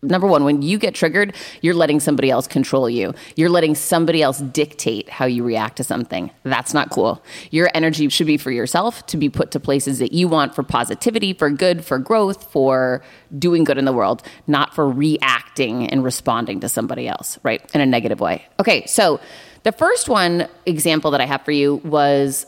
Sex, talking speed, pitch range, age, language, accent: female, 205 wpm, 140-180 Hz, 30-49, English, American